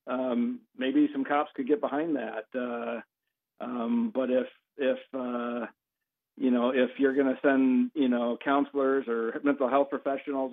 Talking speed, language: 160 wpm, English